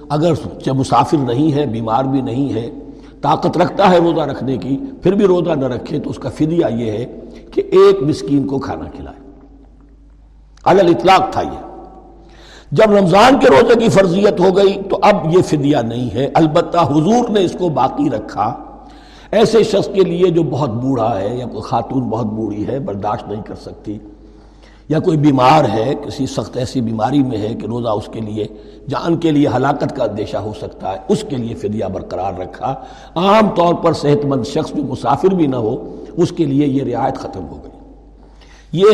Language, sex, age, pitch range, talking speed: Urdu, male, 60-79, 125-170 Hz, 190 wpm